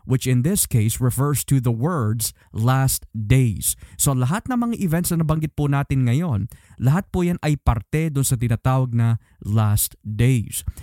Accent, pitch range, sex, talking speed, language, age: native, 115-145 Hz, male, 170 wpm, Filipino, 20-39